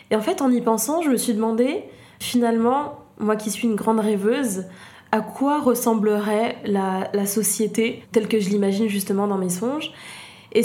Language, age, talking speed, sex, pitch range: French, 20-39, 180 wpm, female, 200-240 Hz